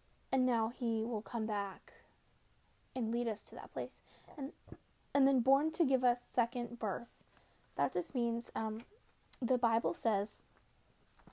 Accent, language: American, English